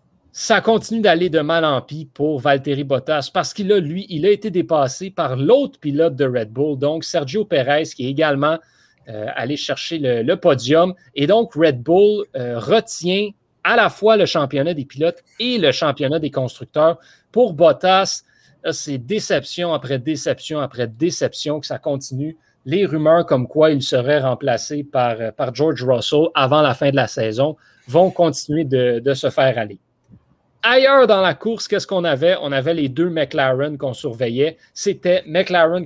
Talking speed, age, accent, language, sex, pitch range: 170 wpm, 30-49, Canadian, French, male, 135-175 Hz